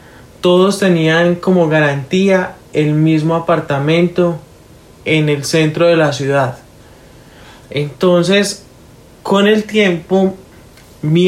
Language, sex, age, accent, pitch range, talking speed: Spanish, male, 20-39, Colombian, 145-175 Hz, 95 wpm